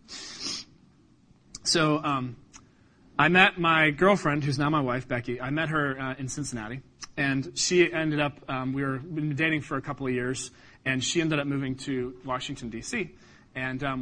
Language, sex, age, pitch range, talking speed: English, male, 30-49, 135-180 Hz, 170 wpm